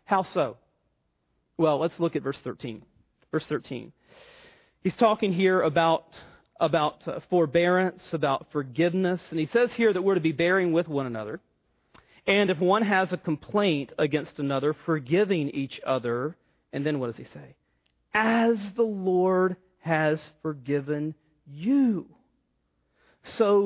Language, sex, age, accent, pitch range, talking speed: English, male, 40-59, American, 145-220 Hz, 135 wpm